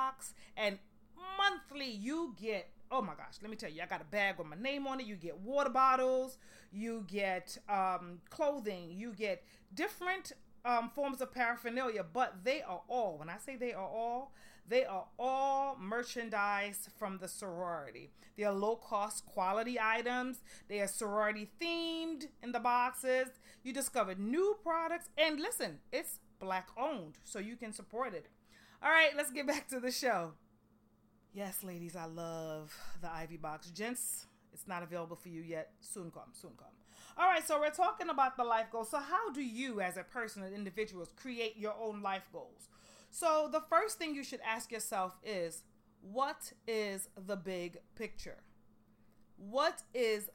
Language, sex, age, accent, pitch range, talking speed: English, female, 30-49, American, 190-265 Hz, 170 wpm